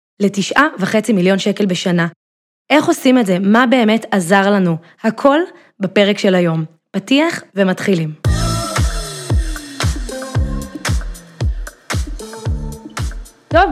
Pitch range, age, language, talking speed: 200-260 Hz, 20-39, Hebrew, 85 wpm